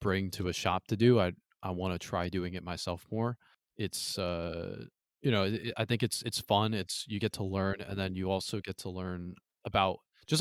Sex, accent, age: male, American, 20-39